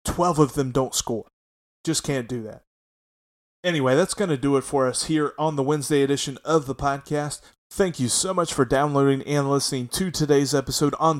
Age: 30-49